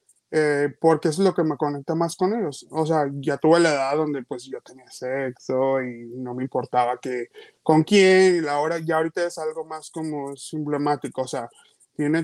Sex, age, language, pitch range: male, 20-39, Spanish, 135-165 Hz